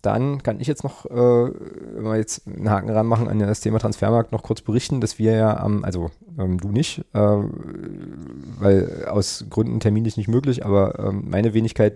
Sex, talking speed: male, 195 wpm